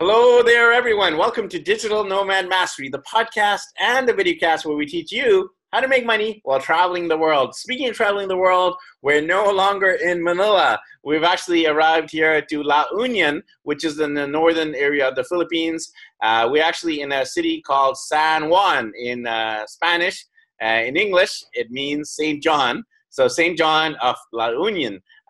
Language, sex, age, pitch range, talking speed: English, male, 30-49, 155-245 Hz, 185 wpm